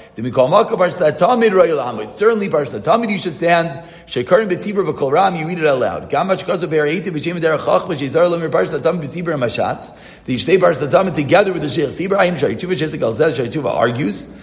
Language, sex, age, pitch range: English, male, 40-59, 140-185 Hz